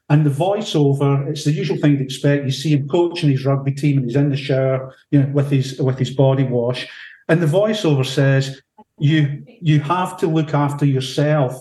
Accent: British